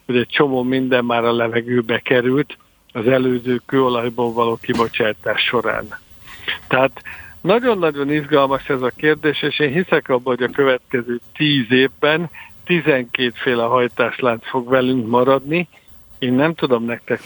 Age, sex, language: 60-79, male, Hungarian